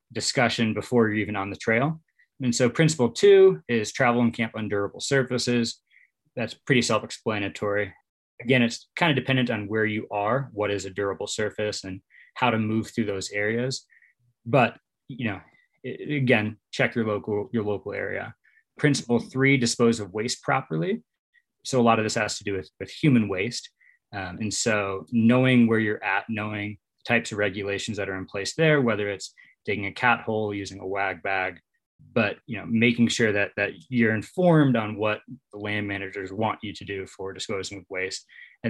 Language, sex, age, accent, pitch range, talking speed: English, male, 20-39, American, 105-120 Hz, 185 wpm